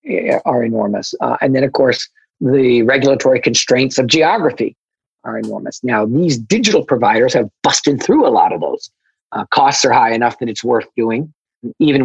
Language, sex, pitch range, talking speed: English, male, 115-160 Hz, 175 wpm